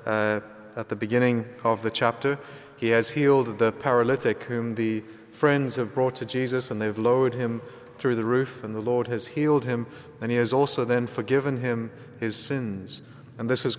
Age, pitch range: 30-49, 115-135 Hz